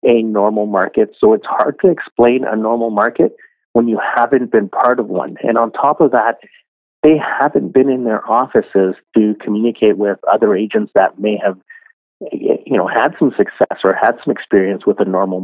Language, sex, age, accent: English, male, 40-59, American